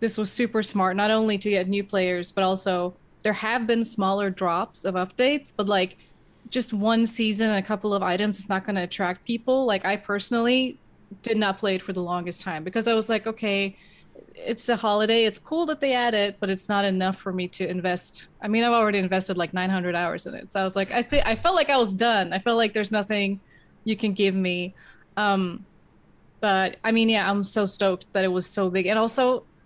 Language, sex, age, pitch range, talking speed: English, female, 20-39, 190-225 Hz, 225 wpm